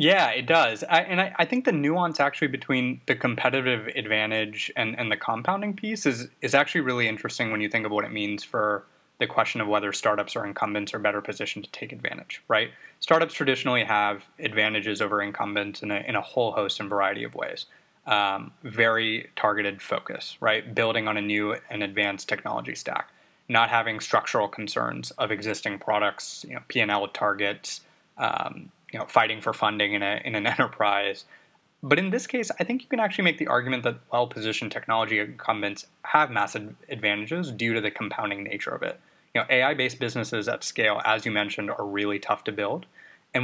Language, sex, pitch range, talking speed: English, male, 105-135 Hz, 195 wpm